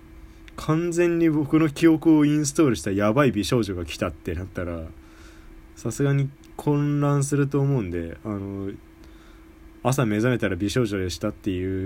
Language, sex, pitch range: Japanese, male, 80-125 Hz